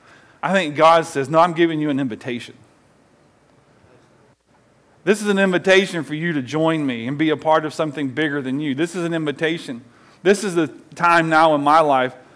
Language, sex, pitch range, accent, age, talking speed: English, male, 140-170 Hz, American, 40-59, 195 wpm